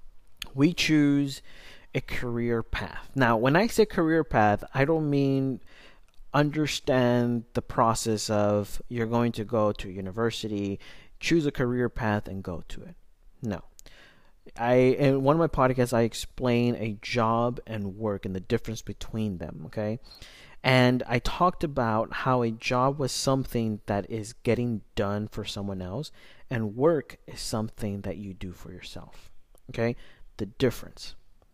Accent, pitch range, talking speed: American, 105-135 Hz, 150 wpm